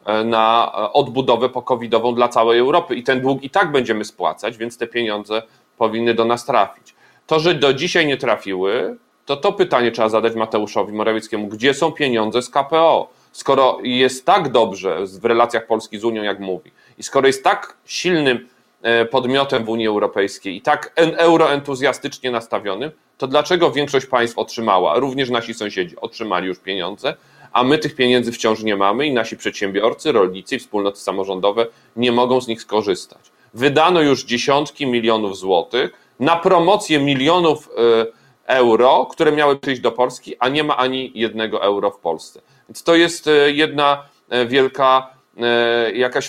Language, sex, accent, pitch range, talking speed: Polish, male, native, 110-140 Hz, 155 wpm